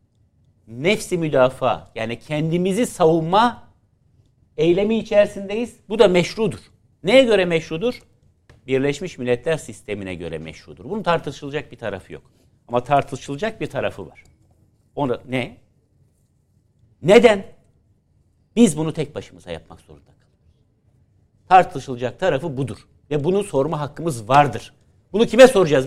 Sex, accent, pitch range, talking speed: male, native, 120-180 Hz, 110 wpm